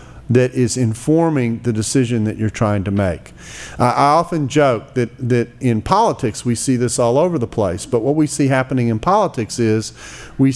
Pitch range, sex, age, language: 115-145 Hz, male, 40-59, English